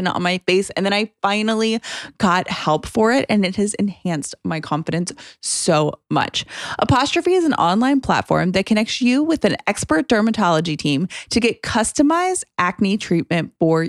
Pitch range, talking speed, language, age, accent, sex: 180-245 Hz, 165 wpm, English, 20-39, American, female